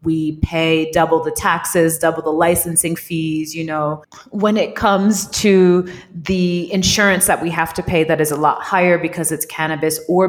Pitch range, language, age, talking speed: 155-180 Hz, English, 30-49, 180 wpm